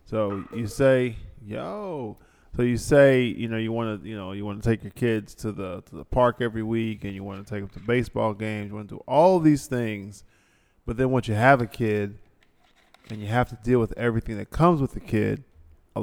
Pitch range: 100-120 Hz